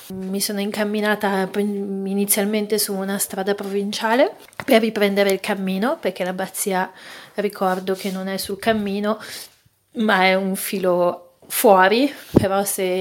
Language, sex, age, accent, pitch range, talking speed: Italian, female, 30-49, native, 190-215 Hz, 125 wpm